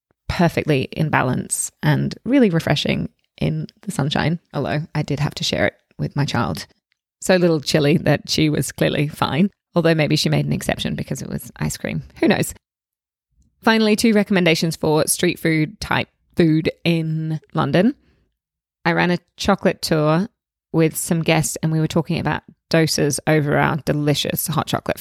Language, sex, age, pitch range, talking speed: English, female, 20-39, 155-185 Hz, 165 wpm